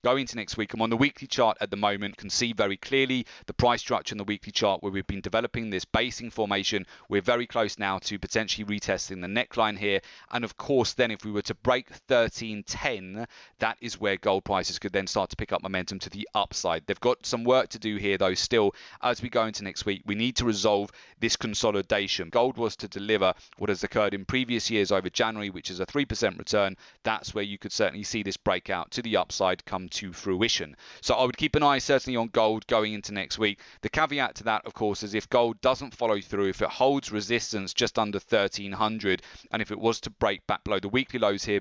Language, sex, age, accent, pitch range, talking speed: English, male, 30-49, British, 100-120 Hz, 235 wpm